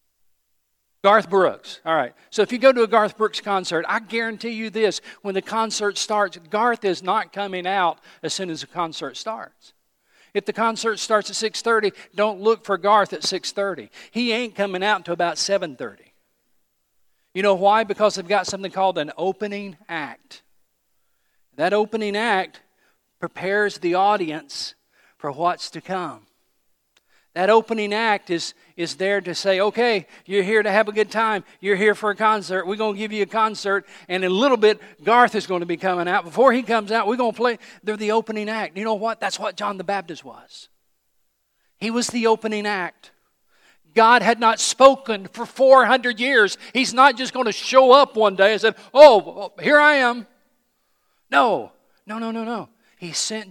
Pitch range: 190-225 Hz